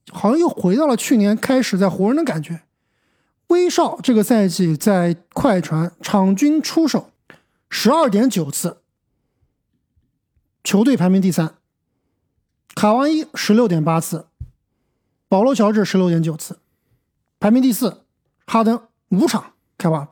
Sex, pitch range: male, 170-245 Hz